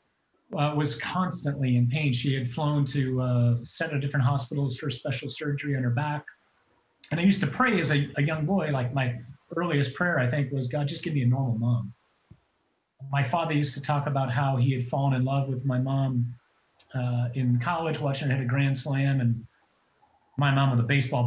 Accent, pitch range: American, 130-160 Hz